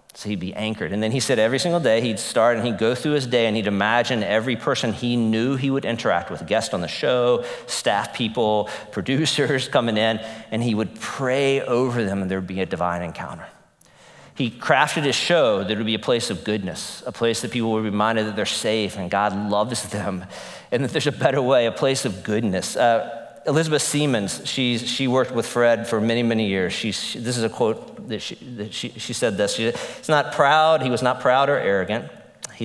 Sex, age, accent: male, 40-59, American